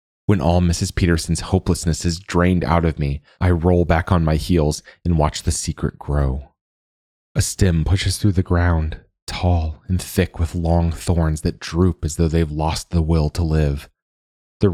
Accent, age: American, 30-49